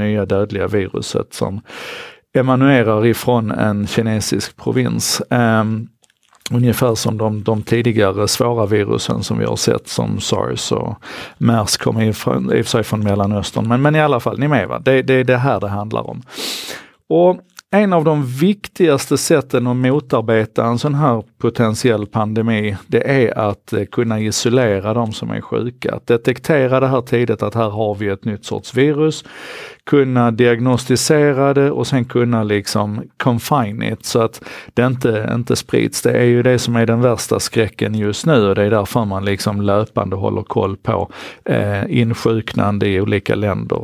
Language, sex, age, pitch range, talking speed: Swedish, male, 50-69, 105-130 Hz, 165 wpm